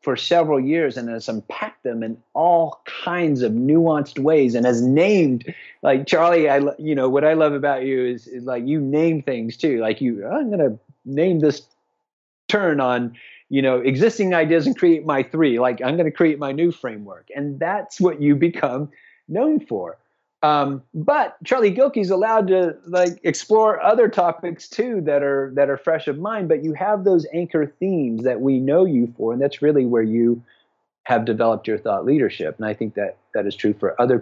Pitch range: 125-165 Hz